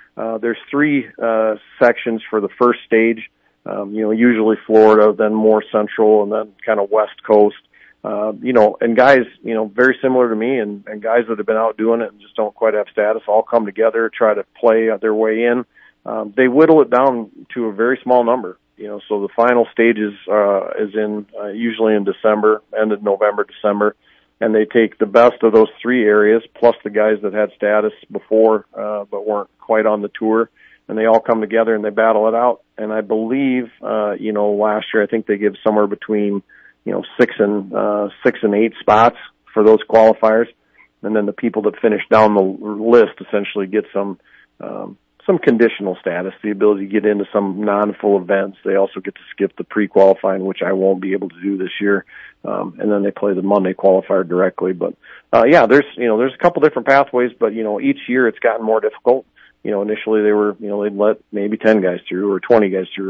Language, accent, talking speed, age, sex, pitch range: English, American, 220 wpm, 40-59, male, 100-115 Hz